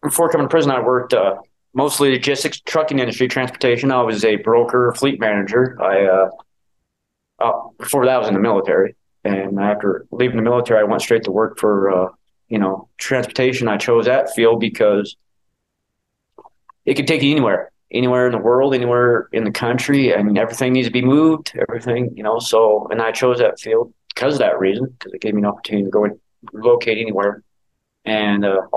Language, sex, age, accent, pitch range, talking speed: English, male, 20-39, American, 100-130 Hz, 195 wpm